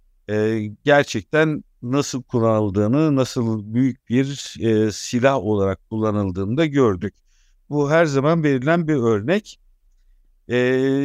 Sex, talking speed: male, 110 wpm